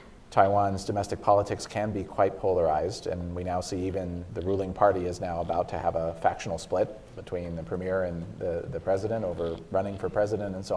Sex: male